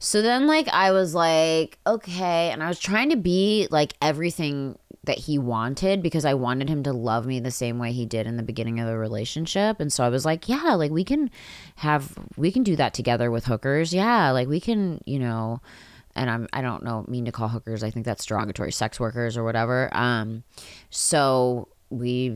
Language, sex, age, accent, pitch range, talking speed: English, female, 20-39, American, 120-160 Hz, 210 wpm